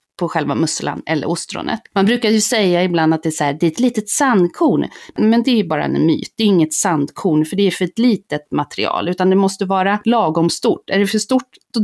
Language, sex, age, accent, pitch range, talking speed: Swedish, female, 30-49, native, 175-230 Hz, 255 wpm